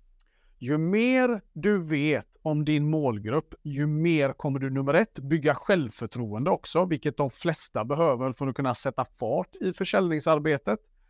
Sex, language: male, Swedish